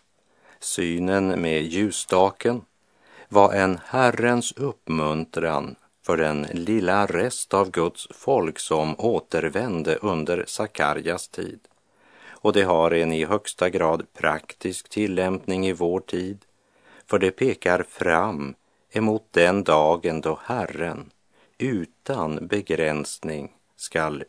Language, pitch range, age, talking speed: Swedish, 80-100 Hz, 50-69, 105 wpm